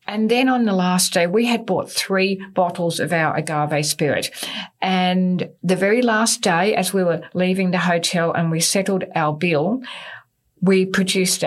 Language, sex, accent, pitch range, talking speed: English, female, Australian, 165-195 Hz, 175 wpm